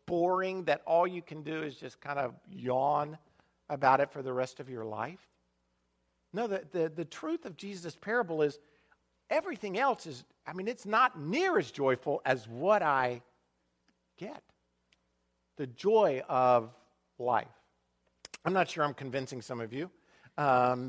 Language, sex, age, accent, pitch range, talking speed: English, male, 50-69, American, 125-185 Hz, 160 wpm